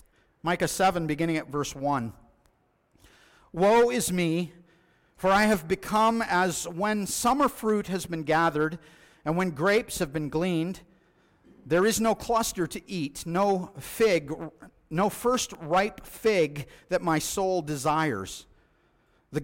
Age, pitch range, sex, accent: 50-69, 155-190 Hz, male, American